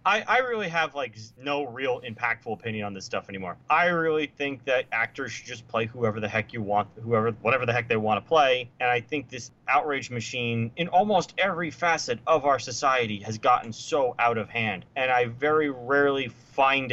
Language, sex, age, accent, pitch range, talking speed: English, male, 30-49, American, 120-170 Hz, 205 wpm